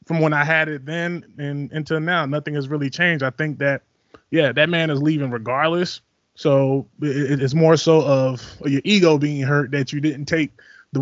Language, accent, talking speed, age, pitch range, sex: English, American, 195 wpm, 20-39, 140-170 Hz, male